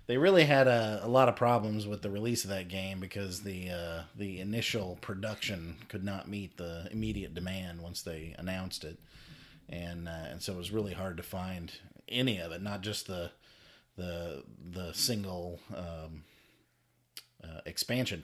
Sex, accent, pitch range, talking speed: male, American, 85-110 Hz, 170 wpm